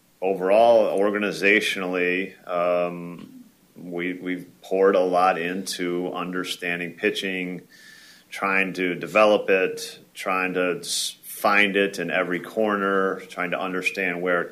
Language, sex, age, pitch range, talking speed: English, male, 40-59, 85-100 Hz, 110 wpm